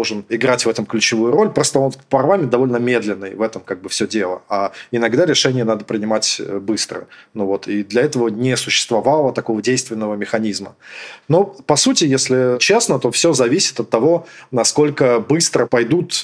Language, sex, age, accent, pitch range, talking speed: Russian, male, 20-39, native, 110-140 Hz, 165 wpm